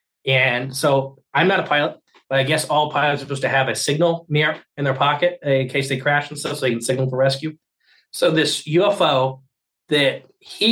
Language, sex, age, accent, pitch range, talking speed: English, male, 20-39, American, 135-165 Hz, 215 wpm